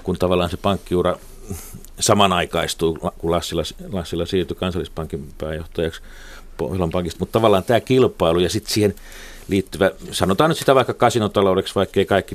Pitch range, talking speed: 90-115 Hz, 130 wpm